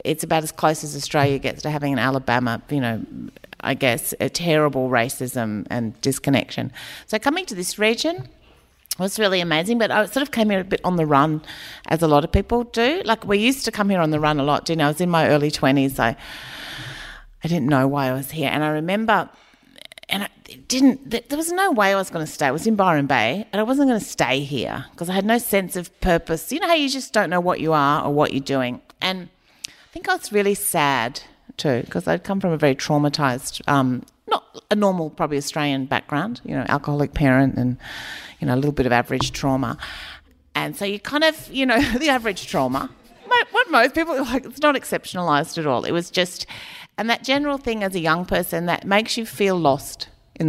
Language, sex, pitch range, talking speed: English, female, 140-205 Hz, 225 wpm